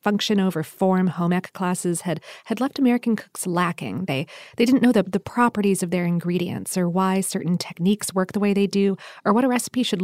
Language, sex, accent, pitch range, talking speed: English, female, American, 175-220 Hz, 215 wpm